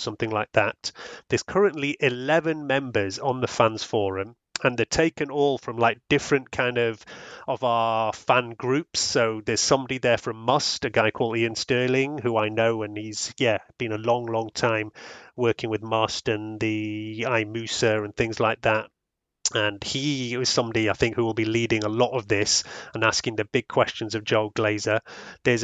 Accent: British